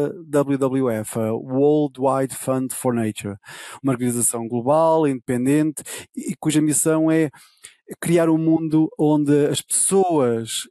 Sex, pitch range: male, 130-165 Hz